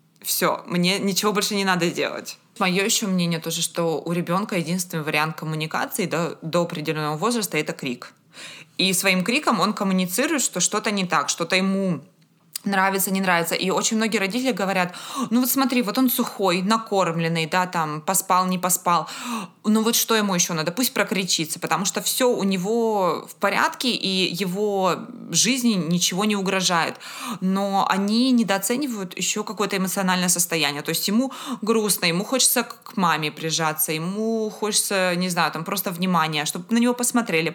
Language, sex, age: Russian, female, 20-39